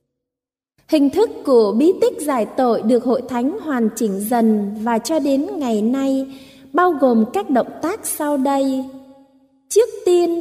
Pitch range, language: 230-330 Hz, Vietnamese